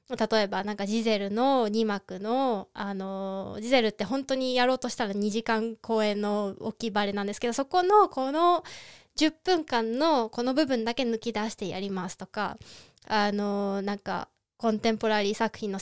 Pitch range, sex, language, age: 210-285 Hz, female, Japanese, 20-39